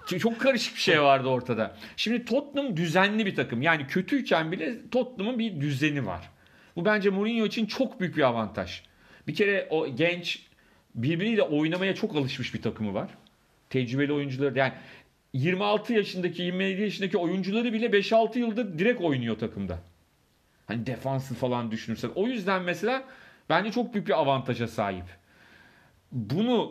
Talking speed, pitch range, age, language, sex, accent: 145 wpm, 130-205 Hz, 40-59, Turkish, male, native